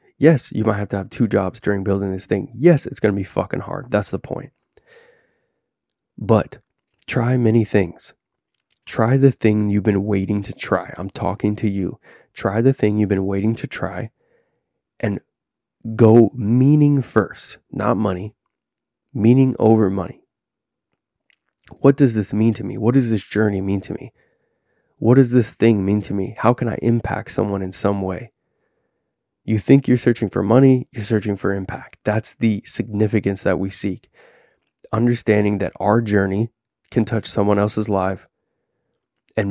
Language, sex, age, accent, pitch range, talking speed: English, male, 20-39, American, 100-115 Hz, 165 wpm